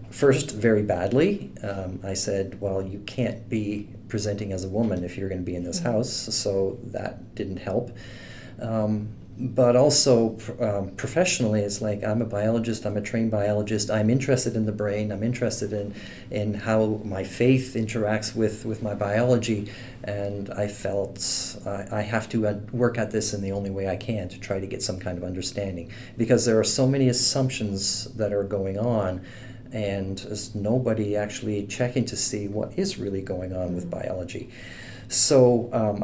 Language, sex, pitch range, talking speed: English, male, 105-120 Hz, 180 wpm